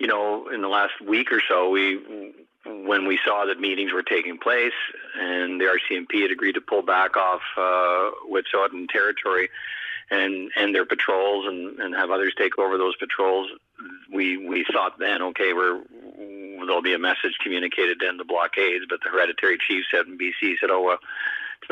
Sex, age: male, 50-69